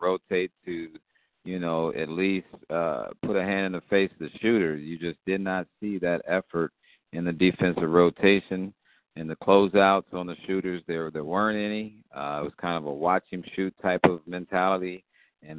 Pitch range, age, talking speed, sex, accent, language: 85-100 Hz, 50-69, 195 wpm, male, American, English